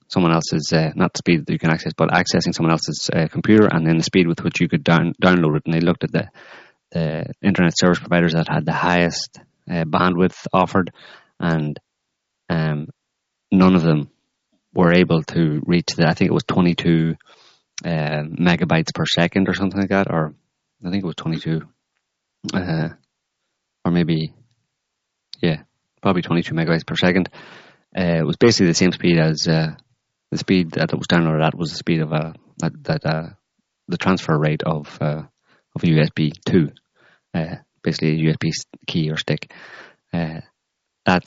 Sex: male